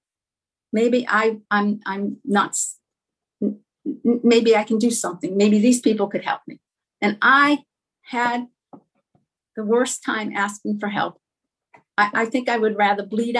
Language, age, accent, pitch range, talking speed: English, 50-69, American, 205-275 Hz, 145 wpm